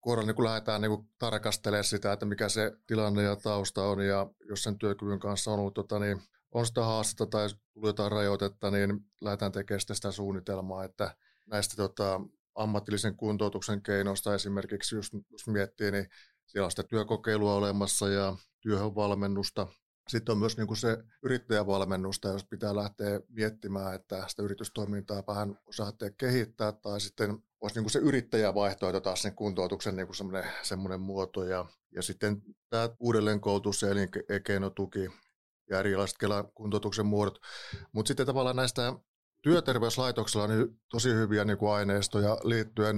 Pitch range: 100-110 Hz